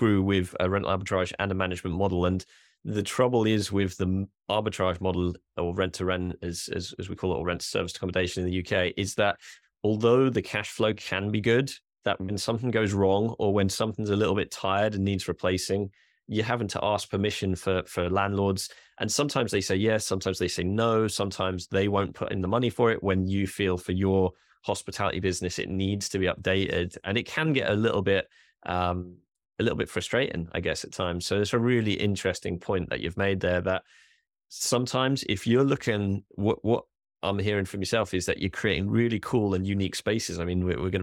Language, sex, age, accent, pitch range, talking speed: English, male, 20-39, British, 95-105 Hz, 210 wpm